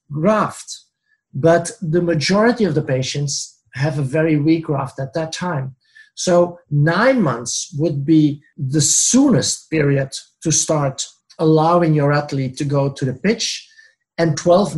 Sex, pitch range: male, 145-180 Hz